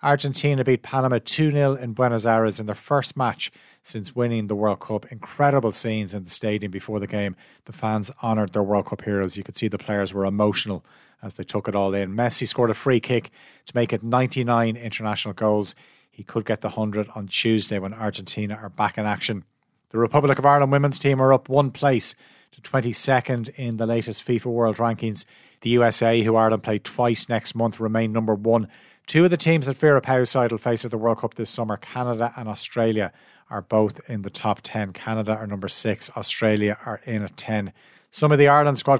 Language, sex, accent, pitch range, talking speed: English, male, Irish, 110-130 Hz, 205 wpm